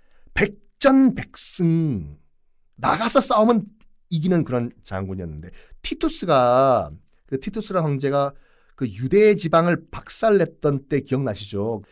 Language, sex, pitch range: Korean, male, 125-200 Hz